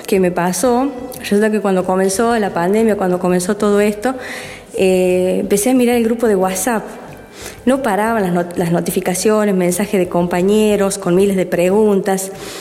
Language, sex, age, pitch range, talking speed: Spanish, female, 20-39, 185-230 Hz, 160 wpm